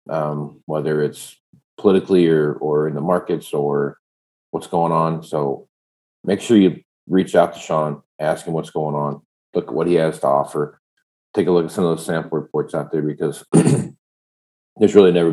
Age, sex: 40-59, male